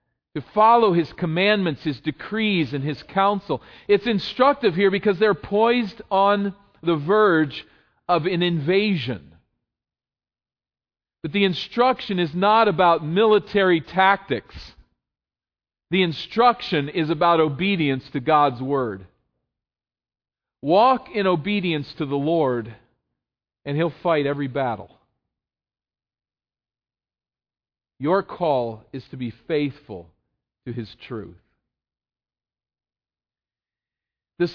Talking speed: 100 wpm